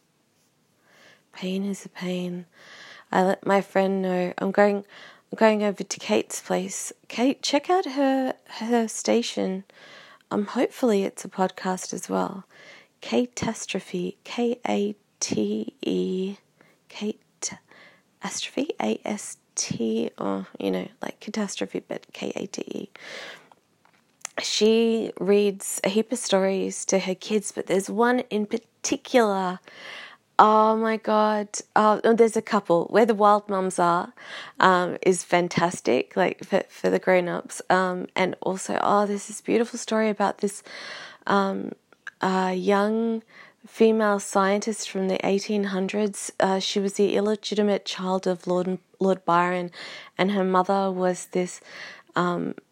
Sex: female